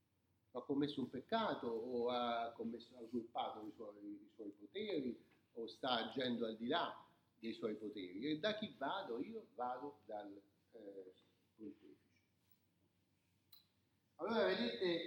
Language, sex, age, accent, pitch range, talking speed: Italian, male, 40-59, native, 115-180 Hz, 125 wpm